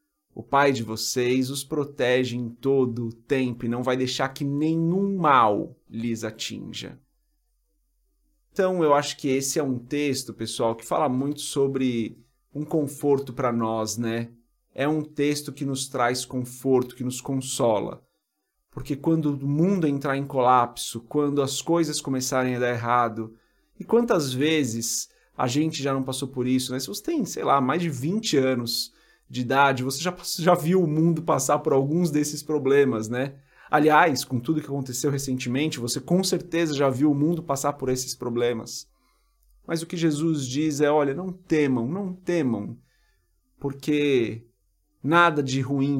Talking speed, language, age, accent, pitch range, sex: 165 wpm, Portuguese, 30-49, Brazilian, 120-150 Hz, male